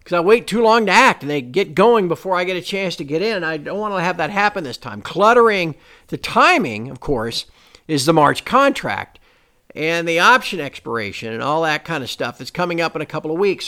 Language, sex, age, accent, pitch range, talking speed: English, male, 50-69, American, 150-210 Hz, 245 wpm